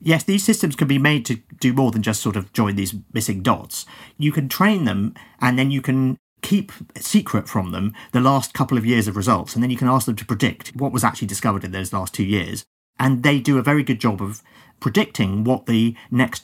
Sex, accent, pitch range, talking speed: male, British, 105-135 Hz, 235 wpm